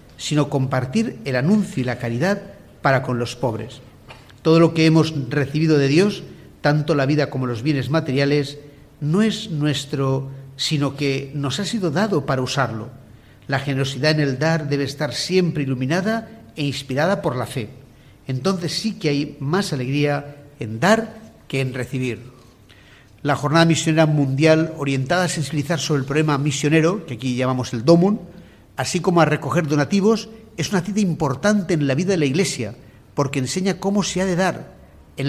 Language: Spanish